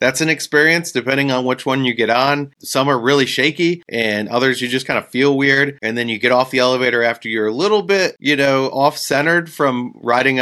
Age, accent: 30-49, American